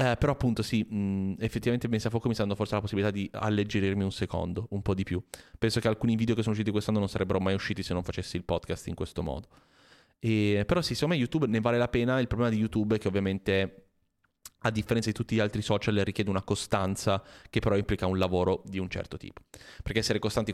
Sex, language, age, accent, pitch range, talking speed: male, Italian, 30-49, native, 95-110 Hz, 235 wpm